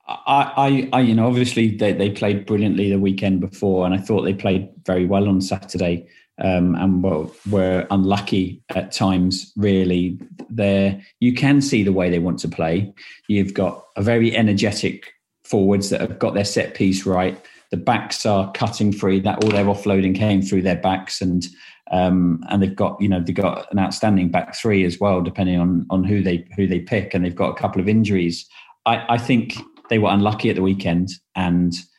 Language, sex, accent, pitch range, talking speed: English, male, British, 90-105 Hz, 200 wpm